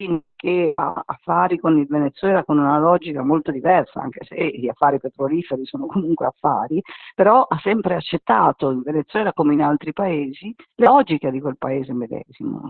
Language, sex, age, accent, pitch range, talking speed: Italian, female, 50-69, native, 145-190 Hz, 165 wpm